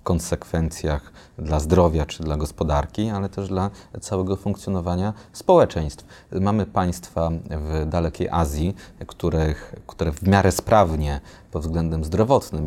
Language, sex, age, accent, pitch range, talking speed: Polish, male, 30-49, native, 80-95 Hz, 115 wpm